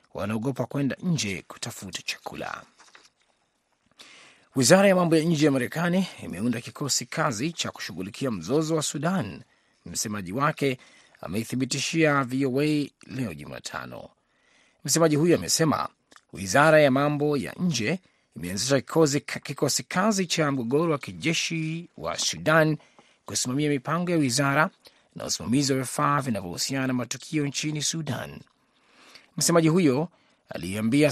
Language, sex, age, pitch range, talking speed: Swahili, male, 30-49, 125-155 Hz, 115 wpm